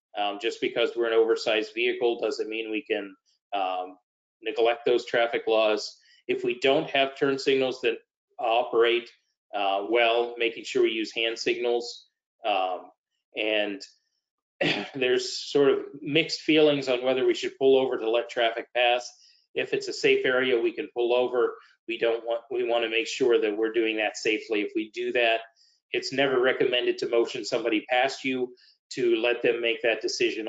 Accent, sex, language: American, male, English